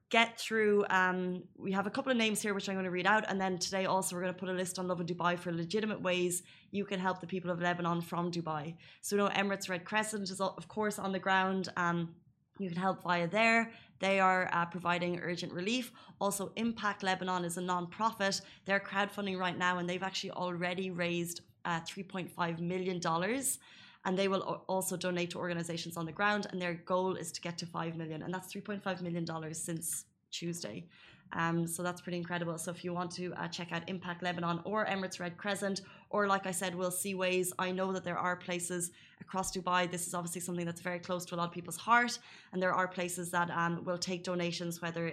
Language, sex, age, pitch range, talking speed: Arabic, female, 20-39, 175-190 Hz, 220 wpm